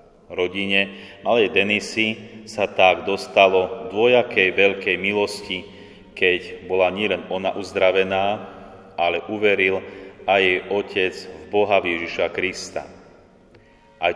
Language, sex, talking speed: Slovak, male, 100 wpm